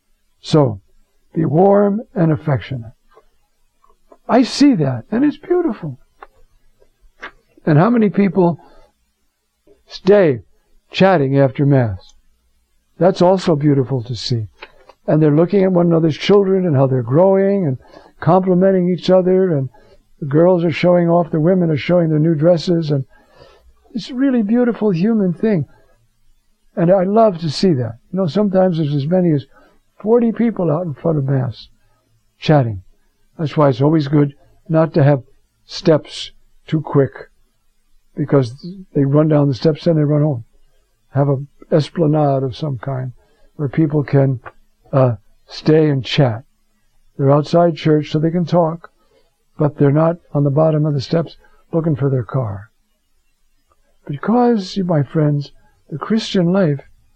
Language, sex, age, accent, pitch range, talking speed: English, male, 60-79, American, 135-180 Hz, 145 wpm